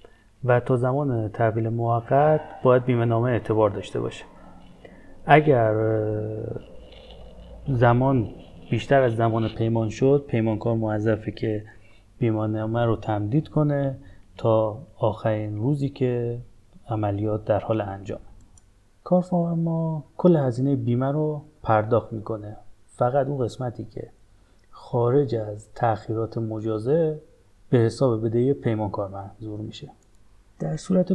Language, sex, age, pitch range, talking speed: Persian, male, 30-49, 105-130 Hz, 115 wpm